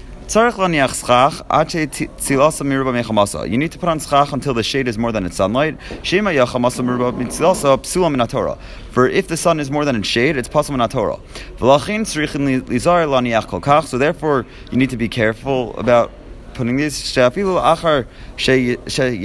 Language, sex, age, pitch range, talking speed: English, male, 30-49, 115-145 Hz, 120 wpm